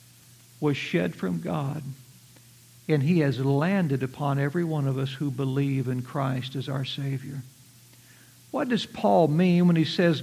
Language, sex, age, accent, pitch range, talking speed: English, male, 60-79, American, 140-210 Hz, 160 wpm